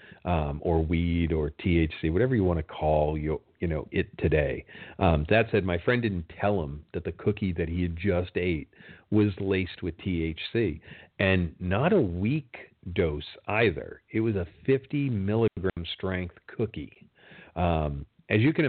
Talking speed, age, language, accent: 165 wpm, 40-59, English, American